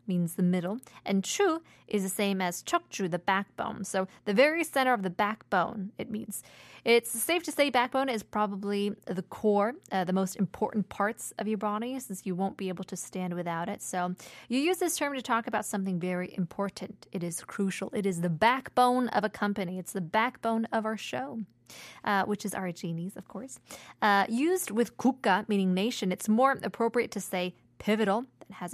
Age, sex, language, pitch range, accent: 20-39, female, Korean, 180-230 Hz, American